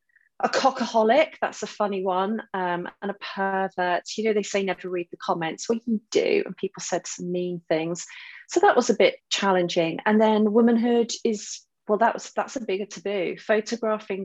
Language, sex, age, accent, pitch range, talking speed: English, female, 30-49, British, 180-230 Hz, 195 wpm